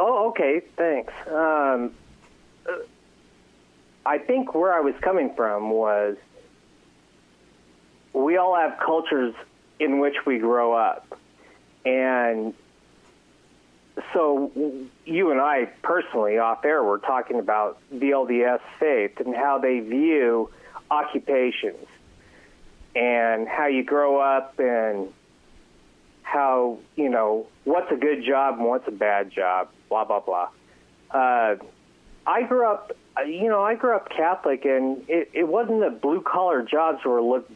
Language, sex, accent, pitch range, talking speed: English, male, American, 110-160 Hz, 130 wpm